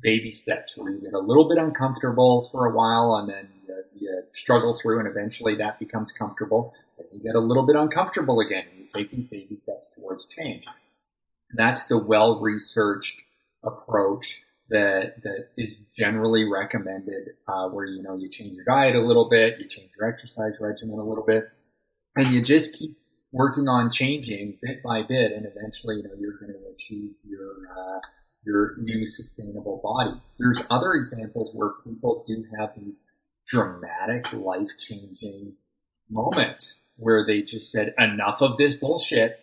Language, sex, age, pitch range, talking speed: English, male, 30-49, 105-125 Hz, 170 wpm